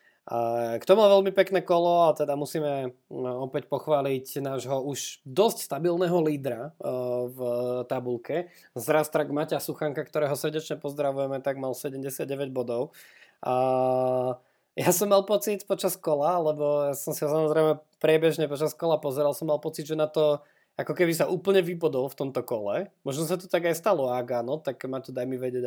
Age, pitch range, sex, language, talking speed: 20-39, 125-155 Hz, male, Slovak, 165 wpm